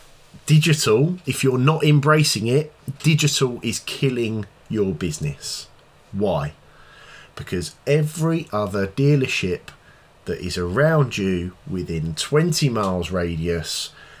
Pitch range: 100-150 Hz